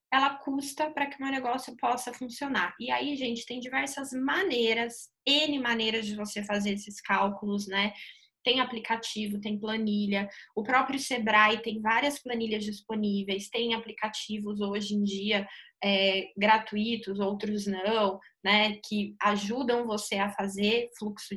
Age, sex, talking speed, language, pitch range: 20-39, female, 140 wpm, Portuguese, 210-240 Hz